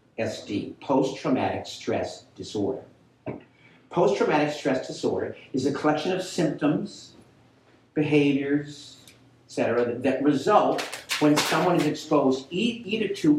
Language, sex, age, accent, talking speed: English, male, 50-69, American, 105 wpm